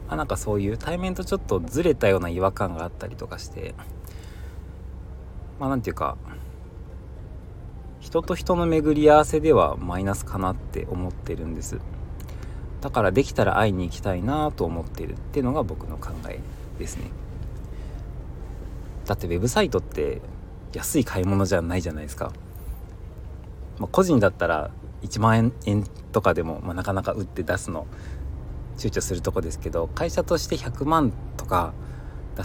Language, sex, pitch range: Japanese, male, 90-110 Hz